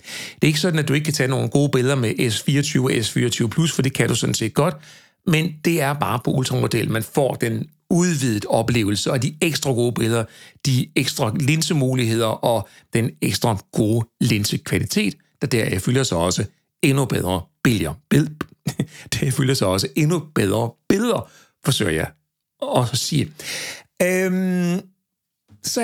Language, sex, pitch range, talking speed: Danish, male, 120-170 Hz, 165 wpm